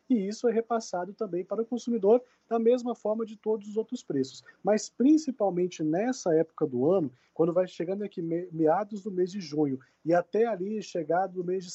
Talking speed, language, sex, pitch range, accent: 195 wpm, Portuguese, male, 175-215 Hz, Brazilian